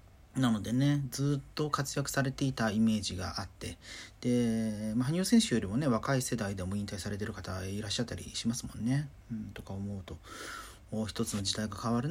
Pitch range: 100-130 Hz